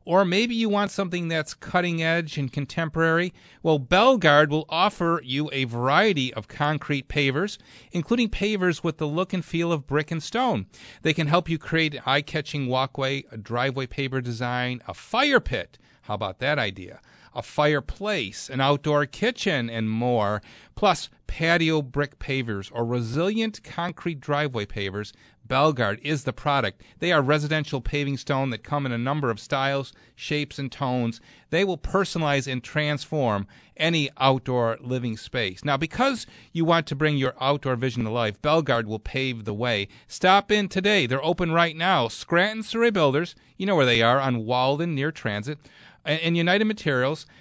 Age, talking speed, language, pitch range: 40-59, 165 wpm, English, 130-170 Hz